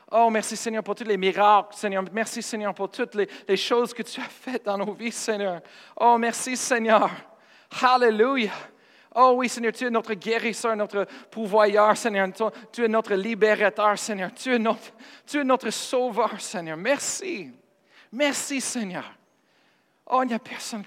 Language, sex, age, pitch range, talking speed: French, male, 40-59, 175-235 Hz, 165 wpm